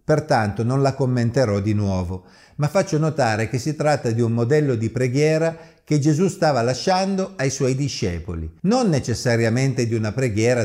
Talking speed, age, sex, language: 165 wpm, 50-69, male, Italian